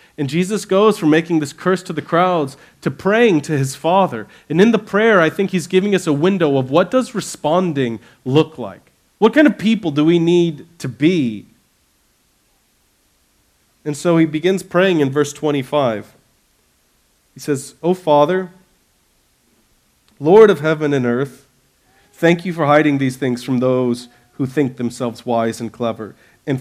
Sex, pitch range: male, 130-175 Hz